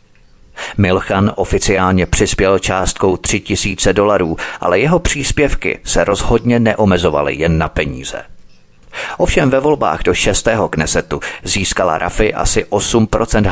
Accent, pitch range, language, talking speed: native, 85-110 Hz, Czech, 115 wpm